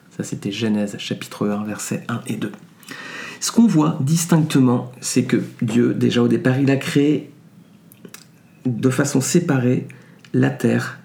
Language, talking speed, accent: French, 145 wpm, French